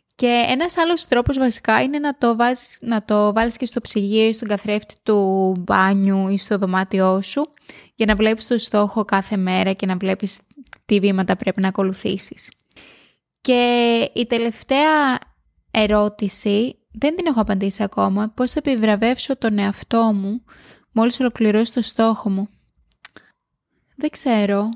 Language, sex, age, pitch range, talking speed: Greek, female, 20-39, 200-245 Hz, 150 wpm